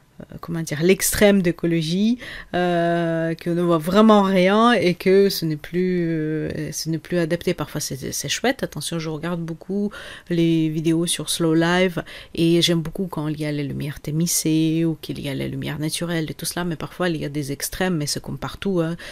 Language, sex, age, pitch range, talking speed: French, female, 30-49, 155-180 Hz, 205 wpm